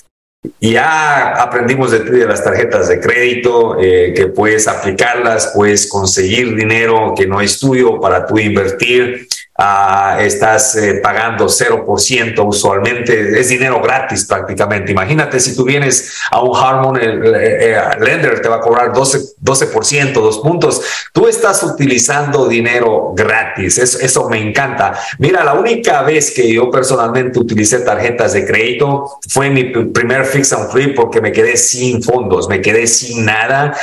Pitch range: 110-140 Hz